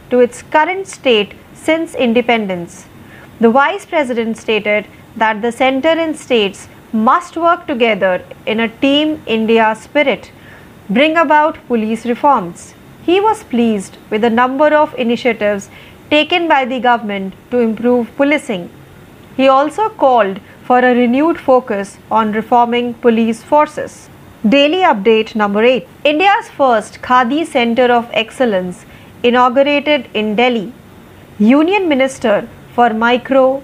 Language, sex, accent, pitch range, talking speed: Marathi, female, native, 225-285 Hz, 125 wpm